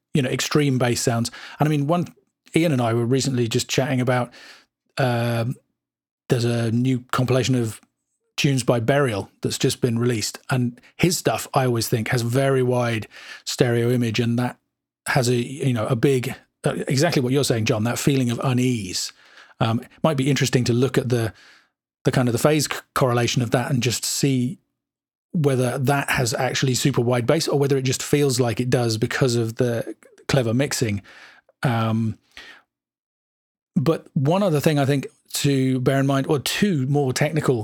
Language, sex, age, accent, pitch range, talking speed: English, male, 40-59, British, 120-140 Hz, 185 wpm